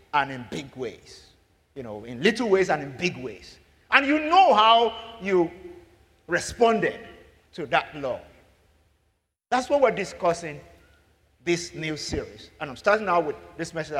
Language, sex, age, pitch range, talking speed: English, male, 50-69, 125-190 Hz, 155 wpm